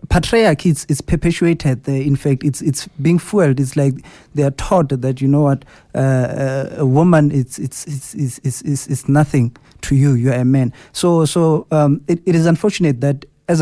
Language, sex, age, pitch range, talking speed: English, male, 30-49, 130-155 Hz, 190 wpm